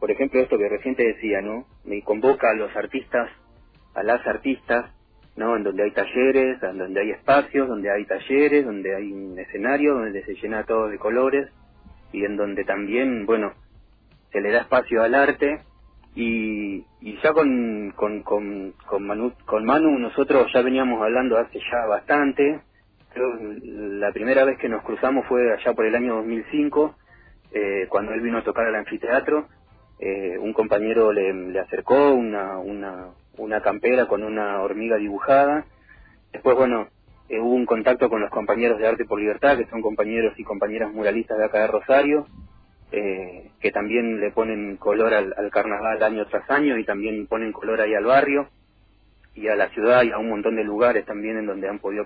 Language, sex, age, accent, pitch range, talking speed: Spanish, male, 30-49, Argentinian, 100-125 Hz, 180 wpm